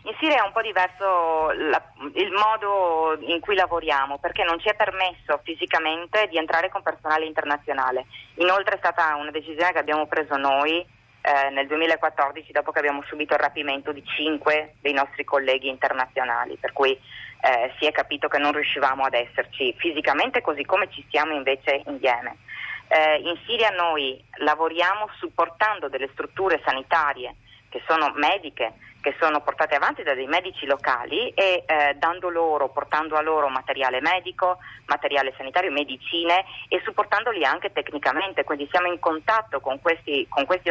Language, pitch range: Italian, 140-180 Hz